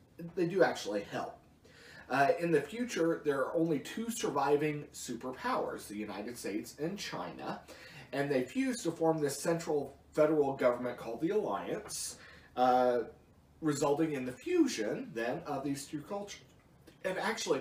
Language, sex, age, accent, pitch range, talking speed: English, male, 30-49, American, 105-150 Hz, 145 wpm